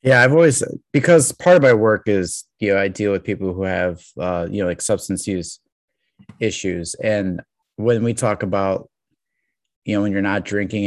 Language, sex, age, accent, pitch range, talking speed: English, male, 30-49, American, 95-125 Hz, 195 wpm